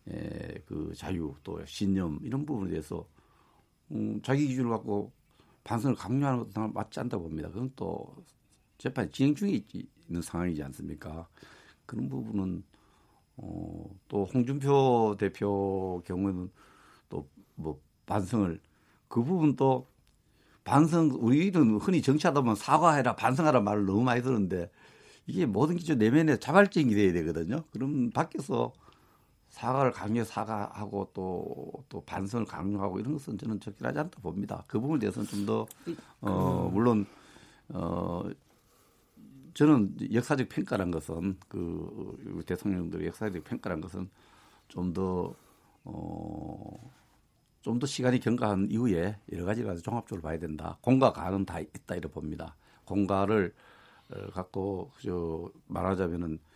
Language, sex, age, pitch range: Korean, male, 60-79, 90-120 Hz